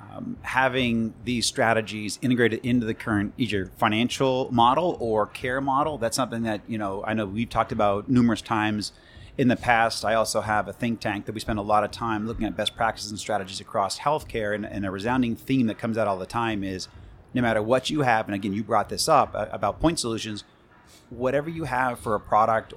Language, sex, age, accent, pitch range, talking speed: English, male, 30-49, American, 105-120 Hz, 215 wpm